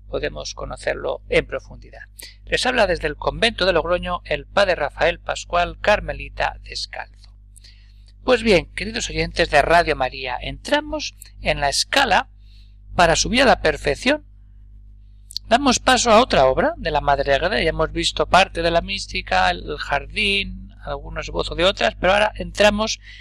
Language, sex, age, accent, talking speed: Spanish, male, 60-79, Spanish, 155 wpm